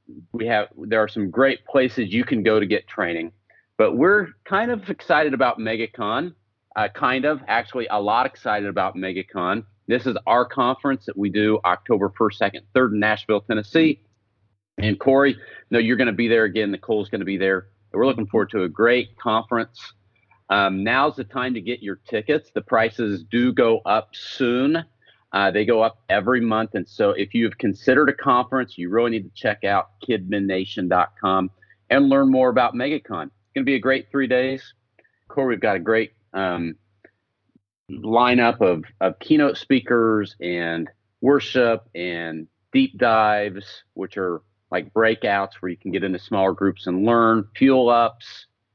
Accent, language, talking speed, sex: American, English, 175 wpm, male